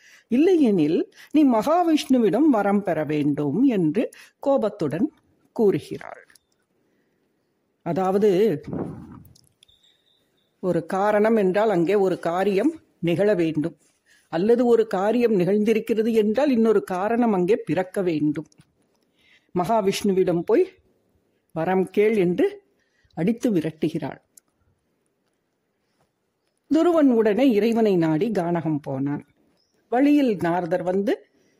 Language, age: English, 60-79